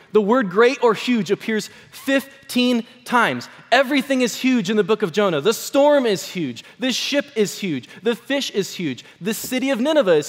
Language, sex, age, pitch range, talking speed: English, male, 20-39, 185-265 Hz, 190 wpm